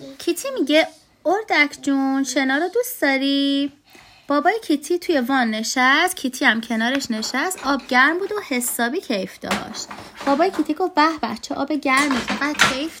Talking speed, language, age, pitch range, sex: 155 wpm, Persian, 20-39, 245-355 Hz, female